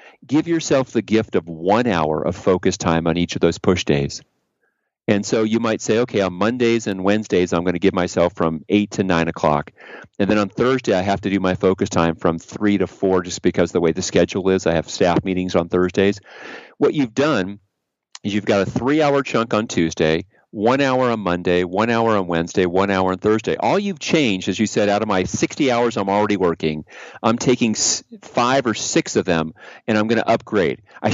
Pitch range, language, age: 90-115 Hz, English, 40-59